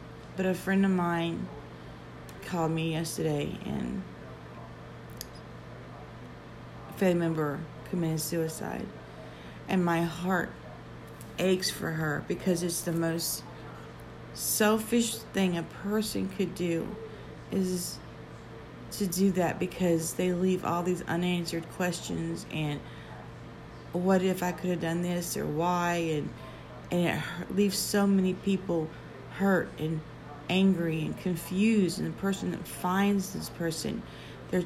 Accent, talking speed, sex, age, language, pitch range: American, 125 wpm, female, 40-59, English, 165-195 Hz